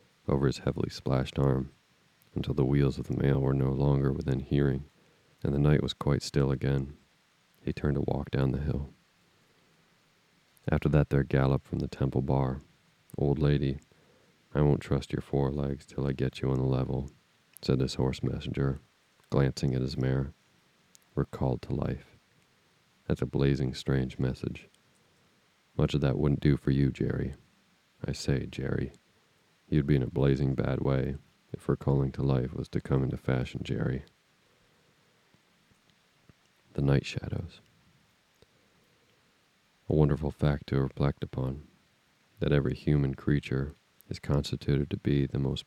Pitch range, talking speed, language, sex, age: 65-70 Hz, 155 wpm, English, male, 40-59